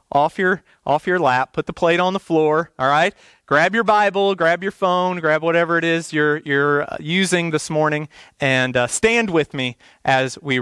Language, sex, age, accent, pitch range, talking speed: English, male, 40-59, American, 130-180 Hz, 200 wpm